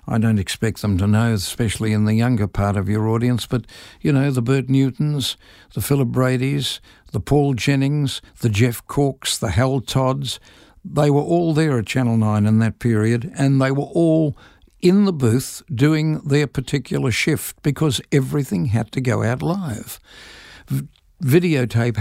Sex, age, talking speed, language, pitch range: male, 60-79, 165 wpm, English, 110-145 Hz